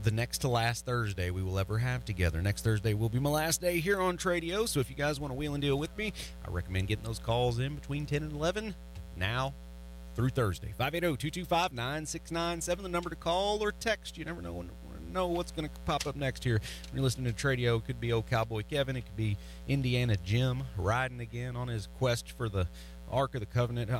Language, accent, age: English, American, 30-49